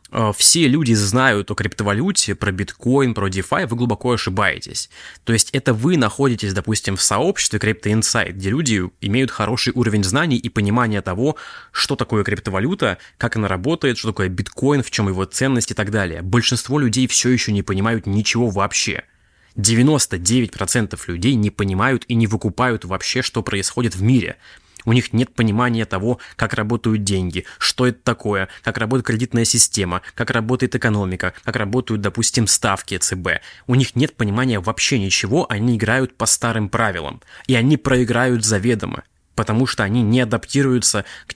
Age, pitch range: 20-39, 105-125 Hz